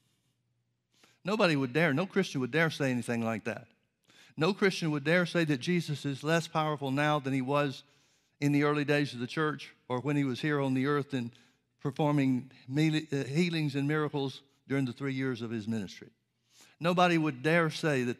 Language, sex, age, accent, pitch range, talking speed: English, male, 60-79, American, 130-155 Hz, 190 wpm